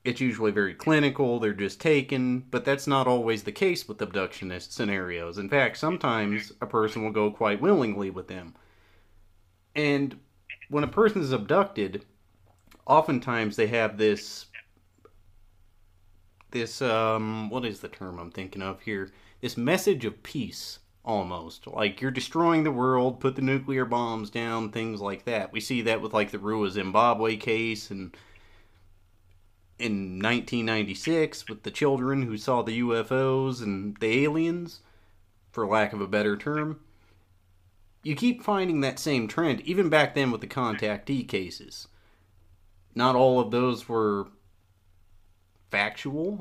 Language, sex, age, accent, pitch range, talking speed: English, male, 30-49, American, 95-130 Hz, 145 wpm